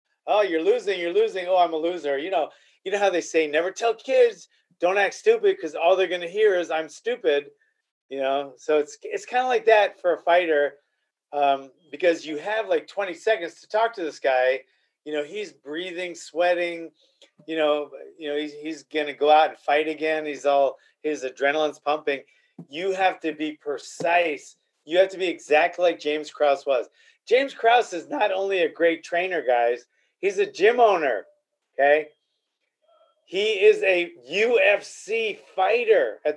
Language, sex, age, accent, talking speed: English, male, 30-49, American, 185 wpm